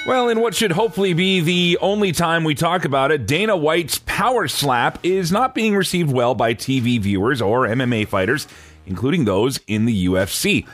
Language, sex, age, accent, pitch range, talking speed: English, male, 30-49, American, 115-165 Hz, 185 wpm